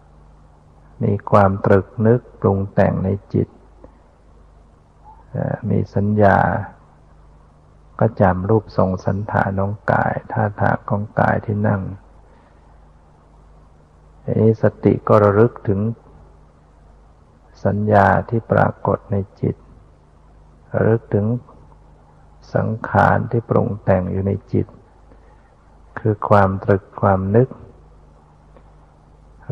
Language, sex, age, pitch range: Thai, male, 60-79, 75-110 Hz